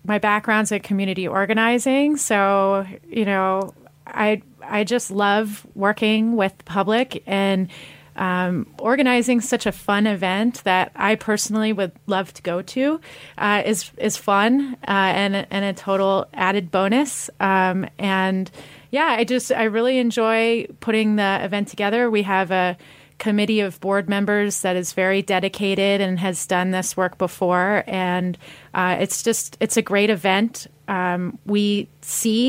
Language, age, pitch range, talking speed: English, 30-49, 185-225 Hz, 150 wpm